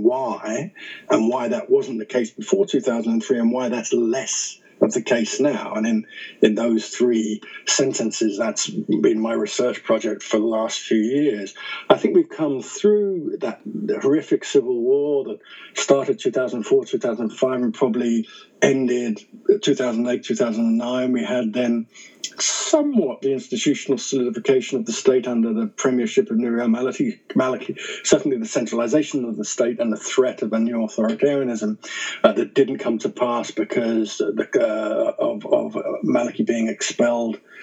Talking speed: 150 wpm